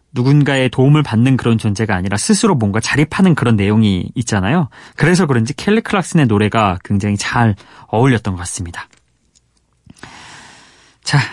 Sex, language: male, Korean